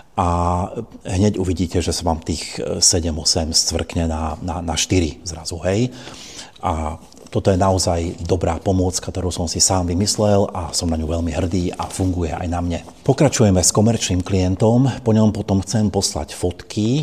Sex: male